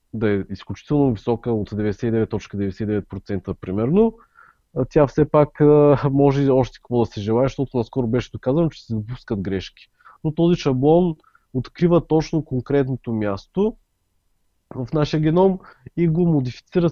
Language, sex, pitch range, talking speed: Bulgarian, male, 115-150 Hz, 130 wpm